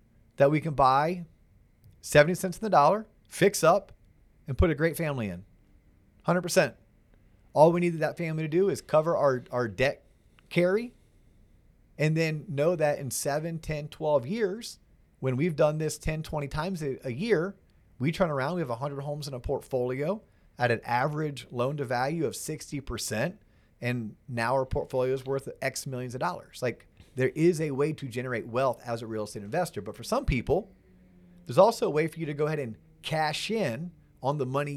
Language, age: English, 30-49